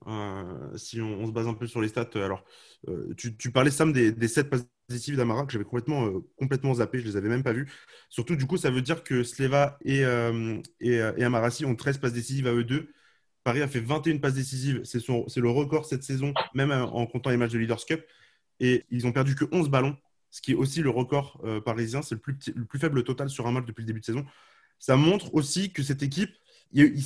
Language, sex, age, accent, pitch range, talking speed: French, male, 20-39, French, 115-140 Hz, 255 wpm